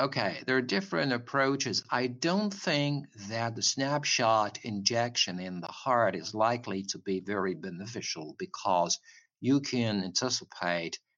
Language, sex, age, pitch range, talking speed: English, male, 60-79, 95-135 Hz, 135 wpm